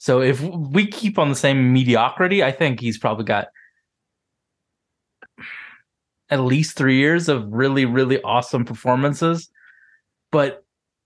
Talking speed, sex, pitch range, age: 125 wpm, male, 120-165 Hz, 20-39